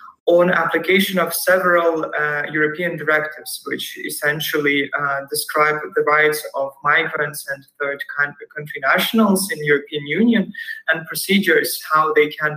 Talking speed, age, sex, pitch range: 140 wpm, 20-39, male, 150-190 Hz